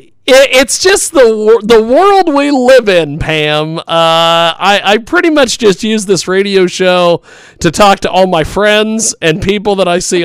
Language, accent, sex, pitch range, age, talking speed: English, American, male, 165-275 Hz, 40-59, 175 wpm